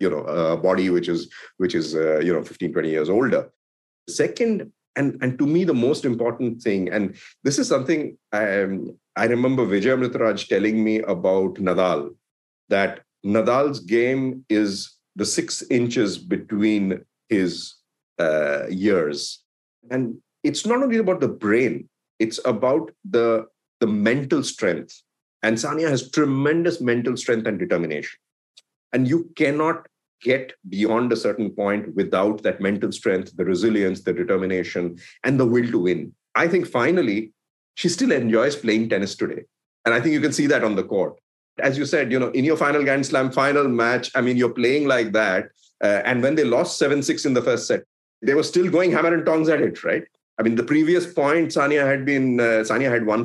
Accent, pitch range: Indian, 110-145 Hz